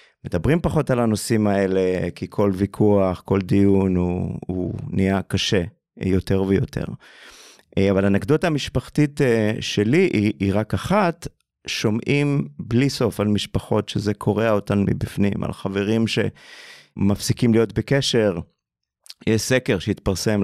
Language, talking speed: Hebrew, 120 wpm